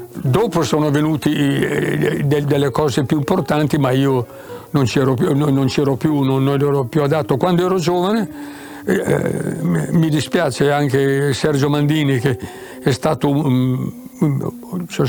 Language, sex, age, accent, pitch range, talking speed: Italian, male, 60-79, native, 140-175 Hz, 125 wpm